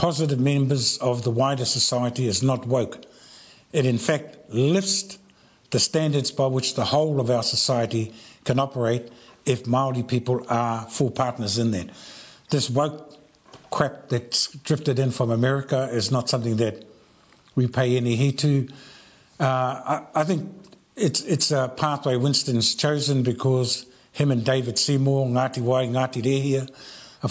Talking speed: 150 wpm